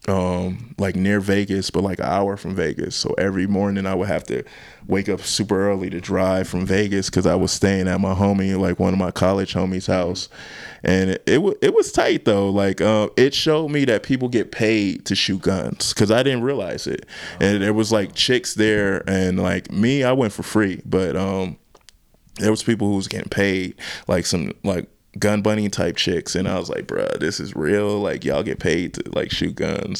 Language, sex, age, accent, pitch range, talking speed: English, male, 20-39, American, 95-105 Hz, 220 wpm